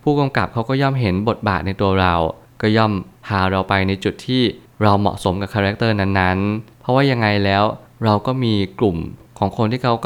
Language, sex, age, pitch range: Thai, male, 20-39, 95-115 Hz